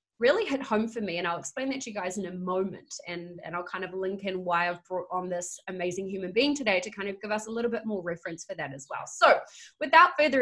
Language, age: English, 20-39